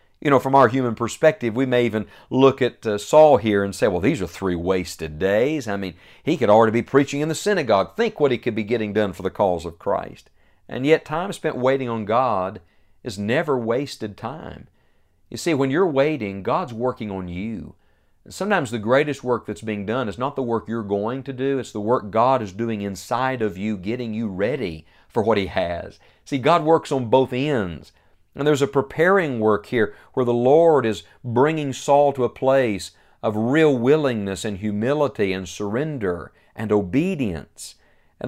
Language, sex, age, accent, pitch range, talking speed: English, male, 40-59, American, 105-140 Hz, 195 wpm